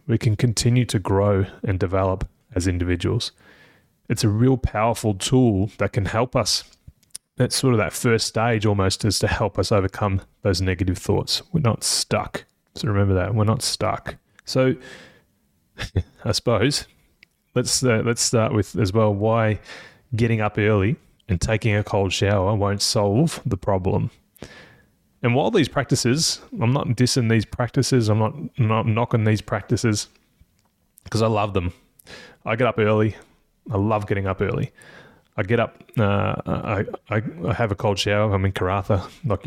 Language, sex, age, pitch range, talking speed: English, male, 20-39, 100-120 Hz, 165 wpm